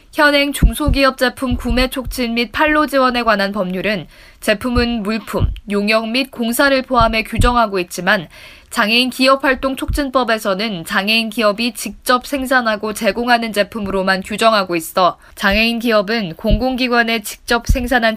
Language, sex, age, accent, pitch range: Korean, female, 20-39, native, 200-250 Hz